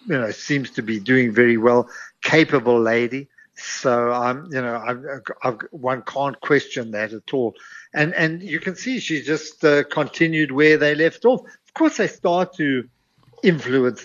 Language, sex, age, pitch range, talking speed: English, male, 60-79, 120-160 Hz, 180 wpm